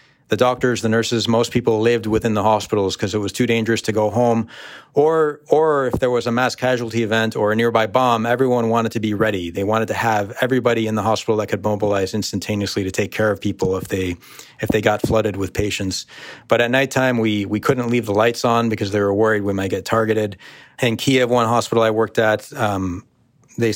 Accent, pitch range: American, 105-120 Hz